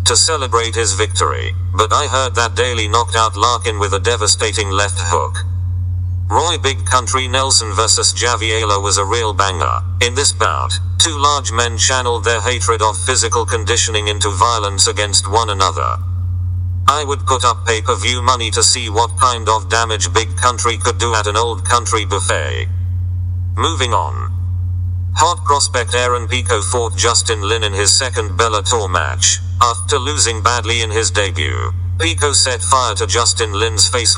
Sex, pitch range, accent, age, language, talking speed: male, 90-100 Hz, British, 40-59, English, 165 wpm